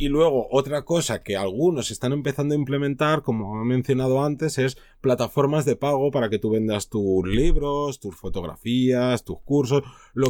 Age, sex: 30-49, male